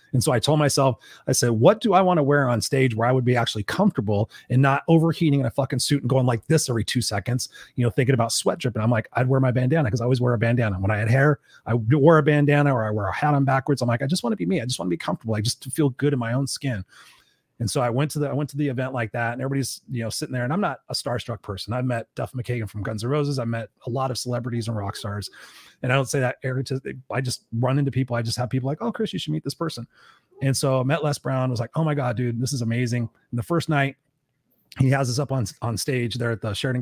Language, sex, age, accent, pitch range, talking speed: English, male, 30-49, American, 120-145 Hz, 305 wpm